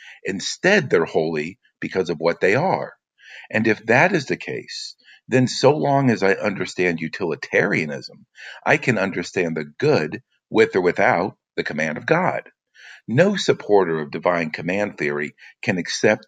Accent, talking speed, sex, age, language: American, 150 wpm, male, 50-69, English